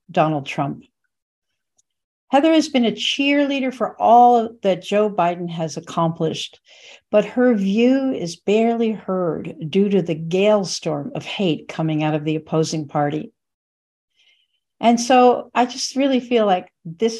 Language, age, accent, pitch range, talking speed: English, 60-79, American, 160-230 Hz, 145 wpm